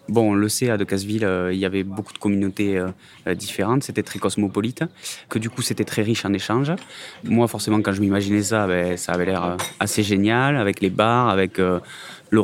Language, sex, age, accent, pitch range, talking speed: French, male, 20-39, French, 95-110 Hz, 210 wpm